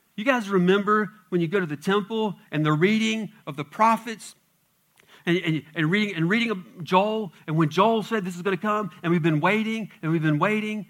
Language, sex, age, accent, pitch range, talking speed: English, male, 40-59, American, 160-215 Hz, 220 wpm